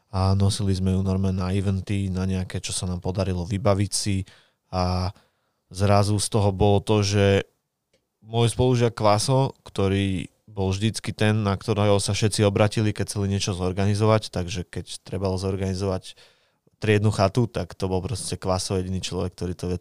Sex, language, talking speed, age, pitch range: male, Slovak, 165 wpm, 20-39, 95-105 Hz